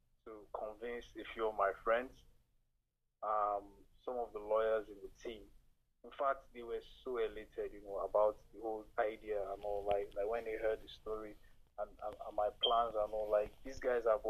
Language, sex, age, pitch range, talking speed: English, male, 20-39, 100-120 Hz, 195 wpm